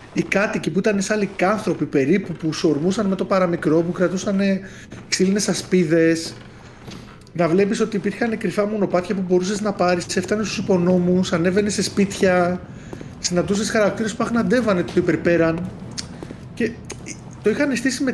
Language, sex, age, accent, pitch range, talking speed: Greek, male, 30-49, native, 170-235 Hz, 150 wpm